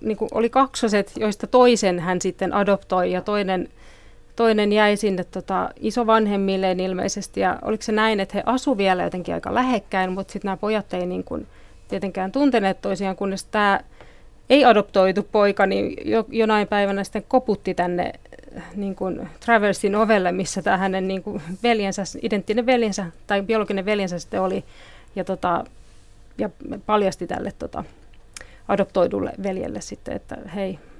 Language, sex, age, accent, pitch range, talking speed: Finnish, female, 30-49, native, 190-225 Hz, 145 wpm